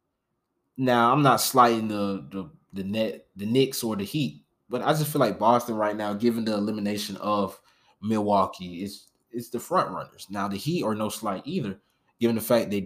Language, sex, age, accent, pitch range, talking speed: English, male, 20-39, American, 100-120 Hz, 195 wpm